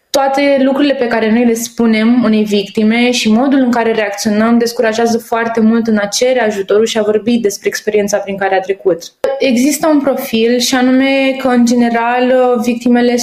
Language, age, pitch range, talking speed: Romanian, 20-39, 225-260 Hz, 175 wpm